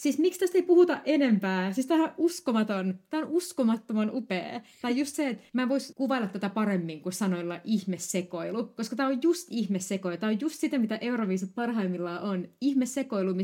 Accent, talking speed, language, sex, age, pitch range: native, 180 wpm, Finnish, female, 30-49, 175-220 Hz